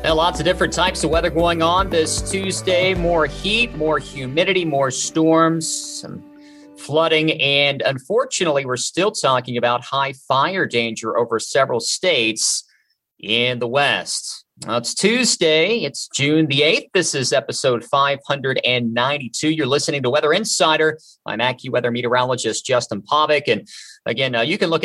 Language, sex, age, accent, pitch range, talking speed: English, male, 50-69, American, 125-165 Hz, 140 wpm